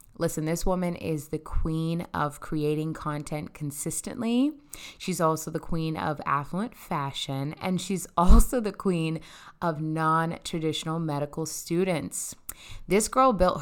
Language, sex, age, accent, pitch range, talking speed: English, female, 20-39, American, 150-195 Hz, 130 wpm